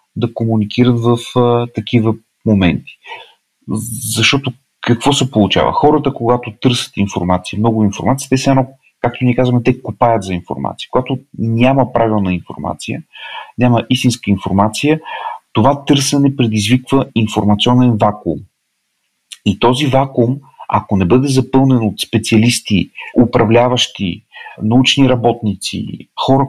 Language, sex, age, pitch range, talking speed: Bulgarian, male, 40-59, 110-130 Hz, 115 wpm